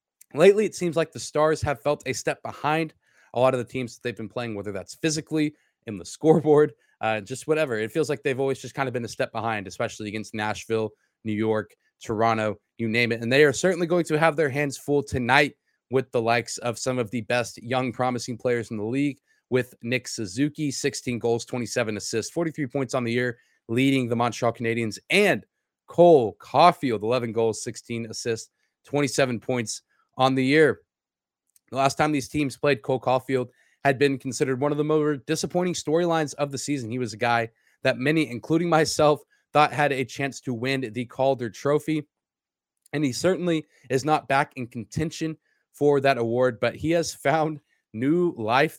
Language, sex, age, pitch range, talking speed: English, male, 20-39, 115-145 Hz, 195 wpm